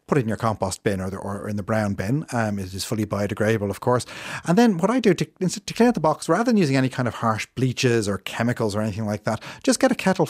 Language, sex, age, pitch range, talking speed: English, male, 30-49, 110-155 Hz, 285 wpm